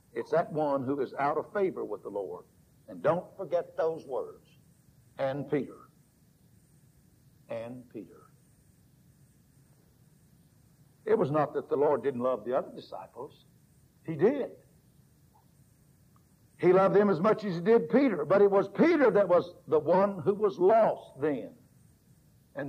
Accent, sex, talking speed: American, male, 145 wpm